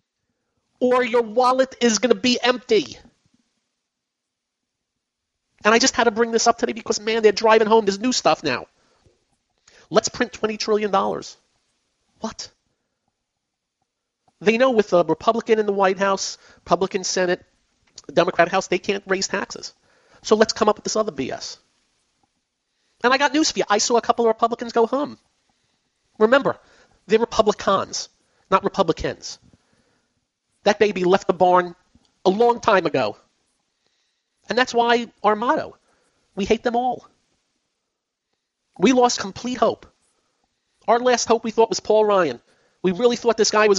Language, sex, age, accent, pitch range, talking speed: English, male, 40-59, American, 195-240 Hz, 150 wpm